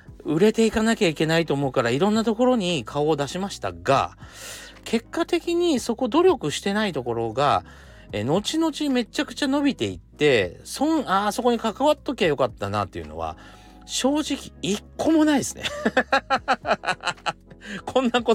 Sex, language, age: male, Japanese, 40-59